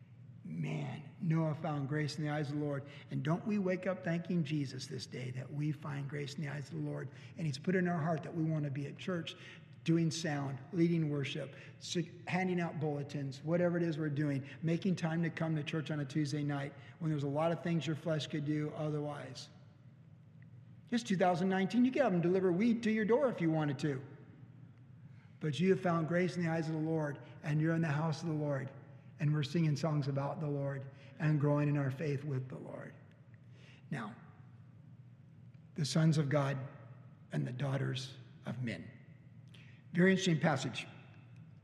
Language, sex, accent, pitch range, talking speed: English, male, American, 140-170 Hz, 195 wpm